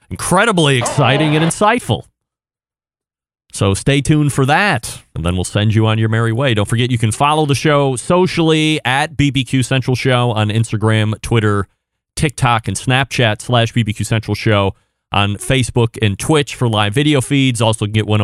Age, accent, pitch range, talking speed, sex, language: 30-49, American, 105-135 Hz, 170 wpm, male, English